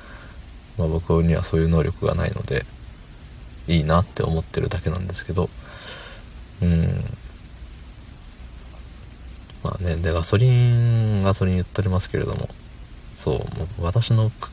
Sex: male